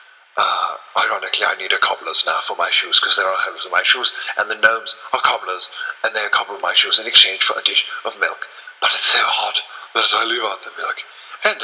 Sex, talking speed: male, 230 wpm